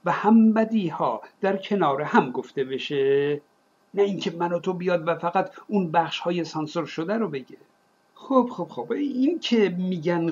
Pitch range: 155-210 Hz